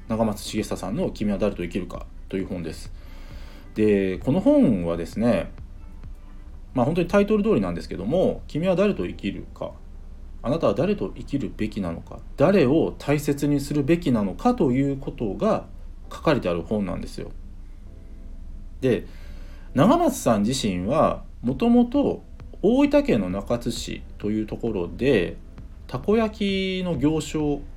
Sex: male